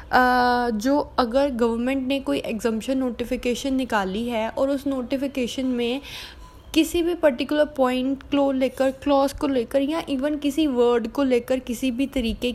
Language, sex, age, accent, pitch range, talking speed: Hindi, female, 10-29, native, 230-265 Hz, 150 wpm